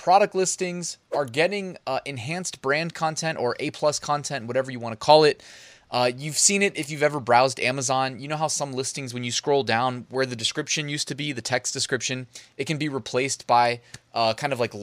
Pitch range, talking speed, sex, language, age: 120-150 Hz, 215 wpm, male, English, 20-39